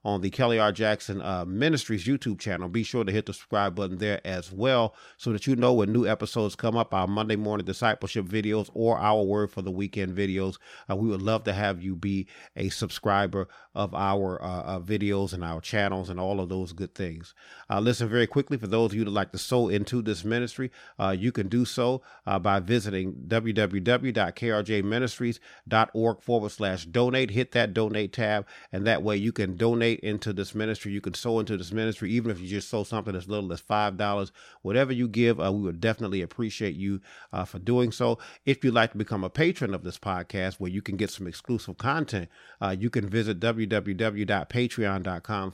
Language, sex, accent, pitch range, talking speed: English, male, American, 100-120 Hz, 205 wpm